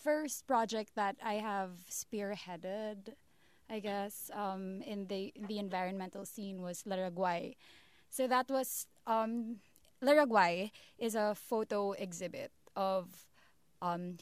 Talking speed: 115 wpm